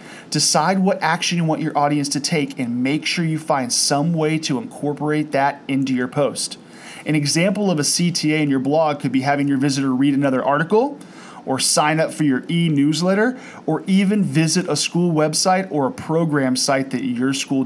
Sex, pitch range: male, 145-190 Hz